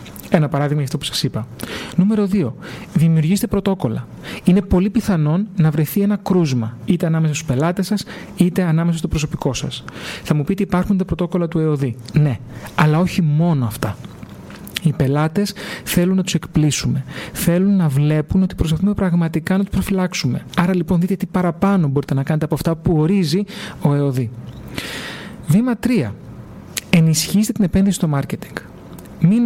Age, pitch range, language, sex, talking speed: 40-59, 145-185 Hz, Greek, male, 160 wpm